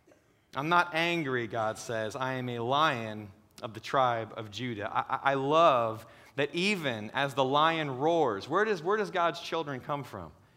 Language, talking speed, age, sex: English, 170 wpm, 30-49, male